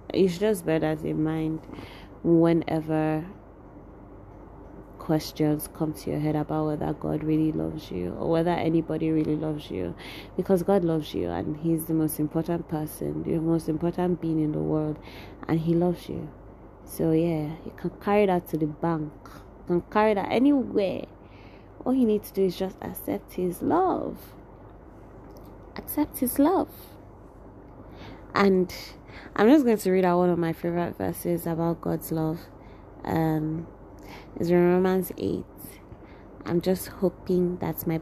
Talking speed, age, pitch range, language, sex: 155 wpm, 20-39, 150-185 Hz, English, female